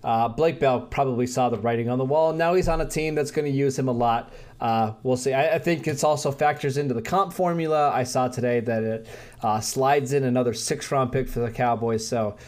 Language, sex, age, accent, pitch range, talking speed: English, male, 20-39, American, 120-150 Hz, 245 wpm